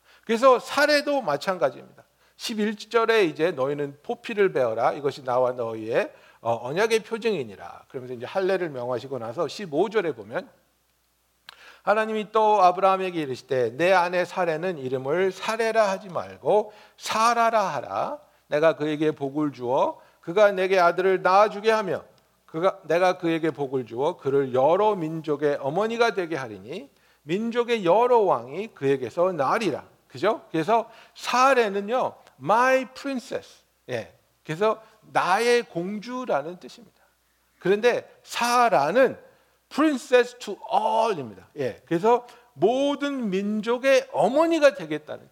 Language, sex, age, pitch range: Korean, male, 60-79, 155-250 Hz